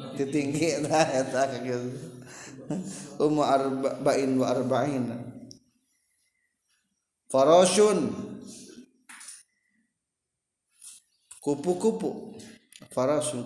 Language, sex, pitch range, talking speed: Indonesian, male, 120-180 Hz, 50 wpm